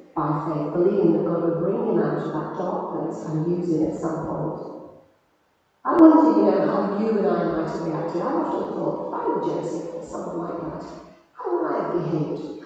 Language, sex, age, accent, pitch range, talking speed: English, female, 40-59, British, 160-195 Hz, 220 wpm